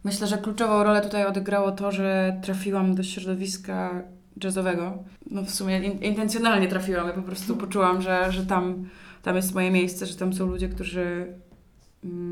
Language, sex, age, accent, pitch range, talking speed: Polish, female, 20-39, native, 185-200 Hz, 170 wpm